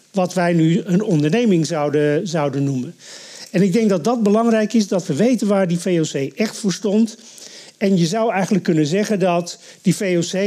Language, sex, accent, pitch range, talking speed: Dutch, male, Dutch, 160-210 Hz, 190 wpm